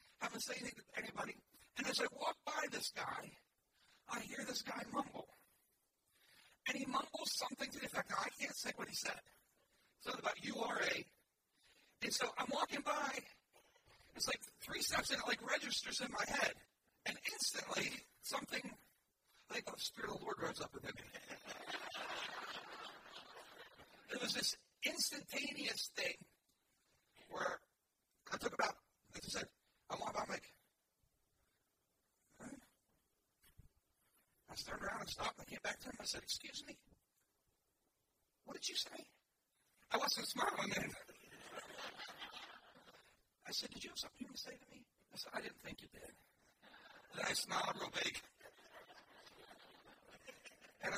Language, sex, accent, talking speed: English, male, American, 155 wpm